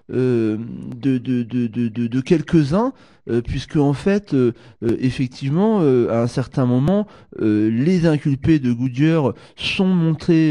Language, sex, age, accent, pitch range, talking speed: French, male, 30-49, French, 120-160 Hz, 155 wpm